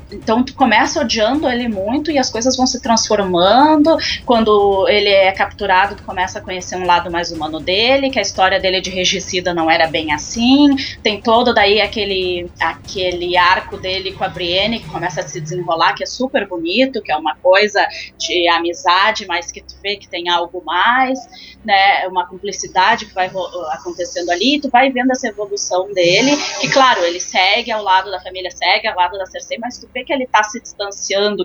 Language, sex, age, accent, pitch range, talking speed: Portuguese, female, 20-39, Brazilian, 185-260 Hz, 195 wpm